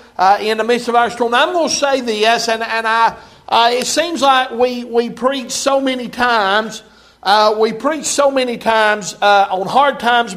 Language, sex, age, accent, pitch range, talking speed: English, male, 60-79, American, 215-250 Hz, 210 wpm